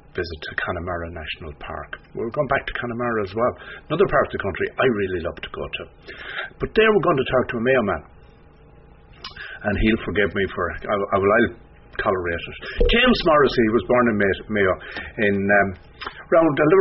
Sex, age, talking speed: male, 60-79, 180 wpm